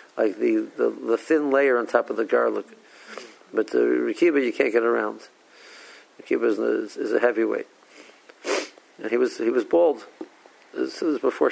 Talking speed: 170 wpm